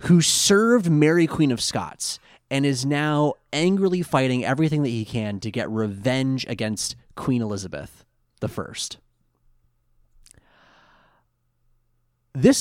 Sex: male